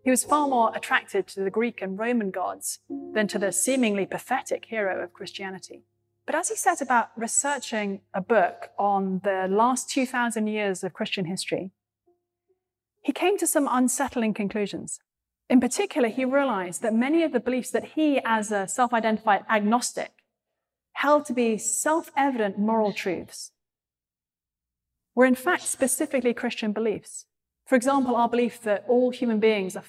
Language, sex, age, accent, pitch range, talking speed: English, female, 30-49, British, 200-260 Hz, 155 wpm